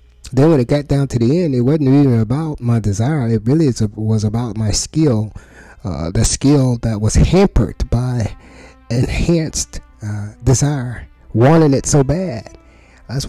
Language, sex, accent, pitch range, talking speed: English, male, American, 105-135 Hz, 165 wpm